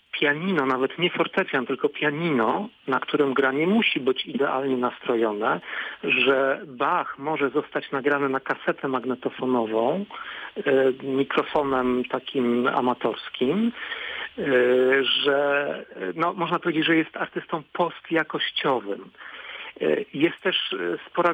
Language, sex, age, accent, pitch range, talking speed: Polish, male, 50-69, native, 130-160 Hz, 100 wpm